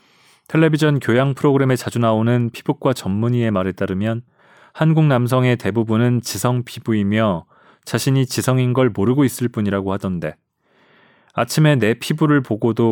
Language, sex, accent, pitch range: Korean, male, native, 105-130 Hz